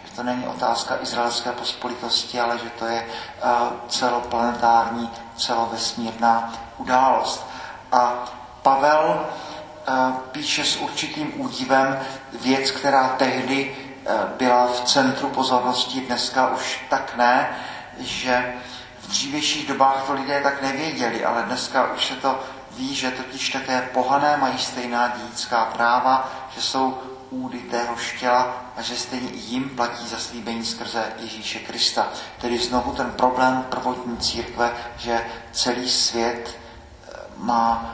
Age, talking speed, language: 40-59, 120 wpm, Czech